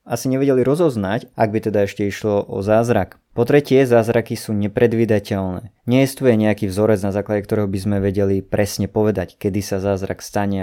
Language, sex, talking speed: Slovak, male, 180 wpm